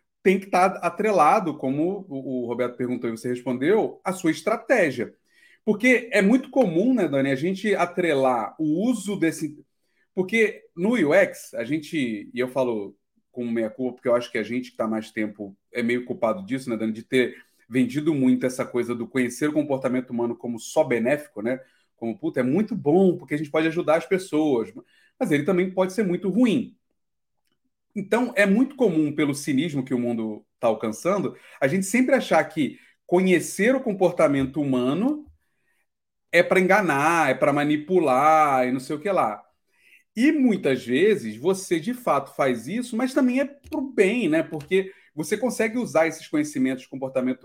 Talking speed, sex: 180 wpm, male